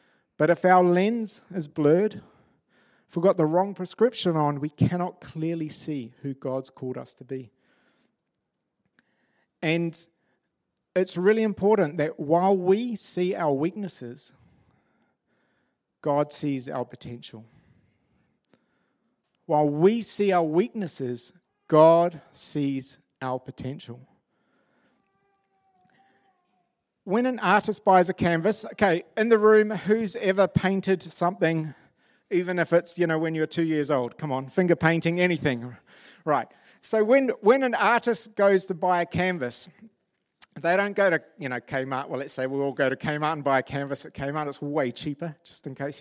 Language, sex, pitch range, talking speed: English, male, 145-200 Hz, 145 wpm